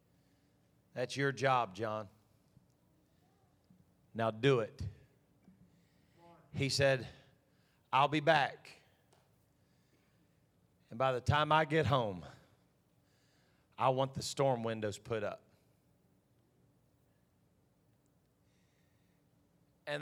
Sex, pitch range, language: male, 130-165 Hz, English